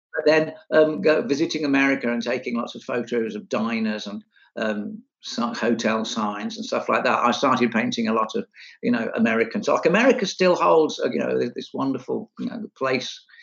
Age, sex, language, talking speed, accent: 60-79, male, English, 190 wpm, British